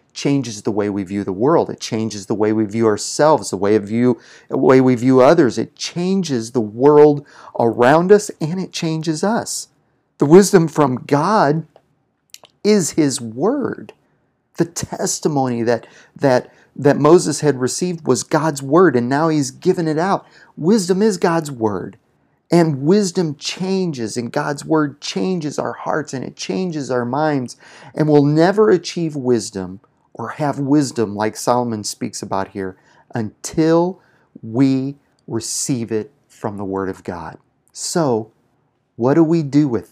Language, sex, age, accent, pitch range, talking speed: English, male, 40-59, American, 115-165 Hz, 155 wpm